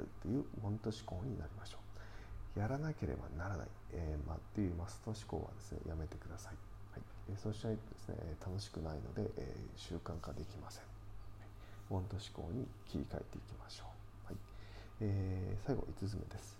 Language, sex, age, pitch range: Japanese, male, 40-59, 95-105 Hz